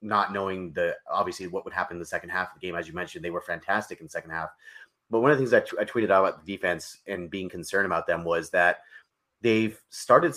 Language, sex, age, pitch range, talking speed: English, male, 30-49, 95-115 Hz, 260 wpm